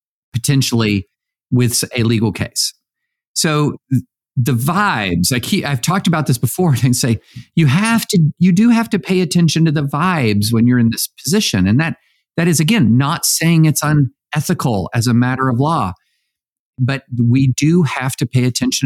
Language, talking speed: English, 160 wpm